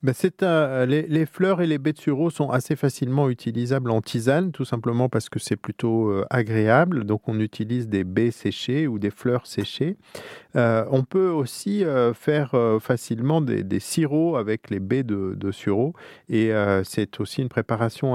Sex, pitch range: male, 105-135 Hz